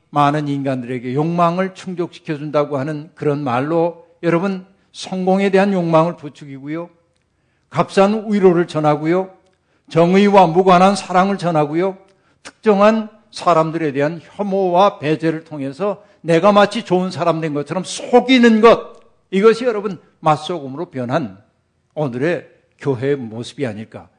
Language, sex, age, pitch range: Korean, male, 60-79, 130-175 Hz